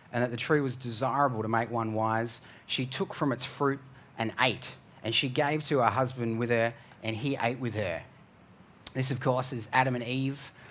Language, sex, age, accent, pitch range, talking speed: English, male, 30-49, Australian, 130-150 Hz, 205 wpm